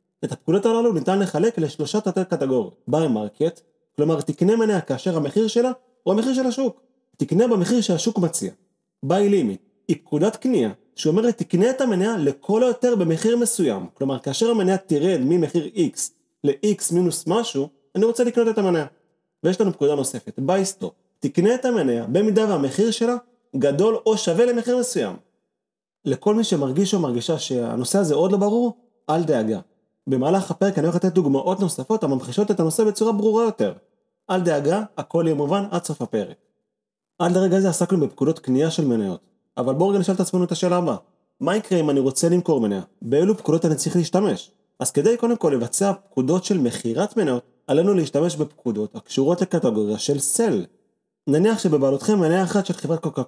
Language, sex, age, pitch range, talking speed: Hebrew, male, 30-49, 155-215 Hz, 160 wpm